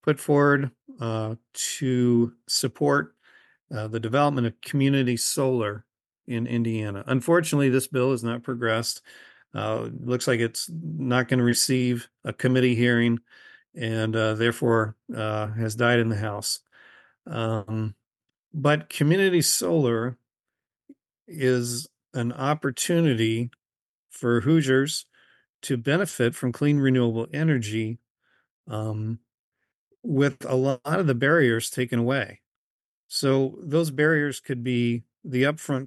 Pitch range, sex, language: 120-140 Hz, male, English